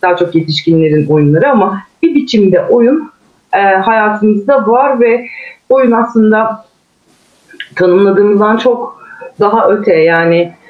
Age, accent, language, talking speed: 40-59, native, Turkish, 105 wpm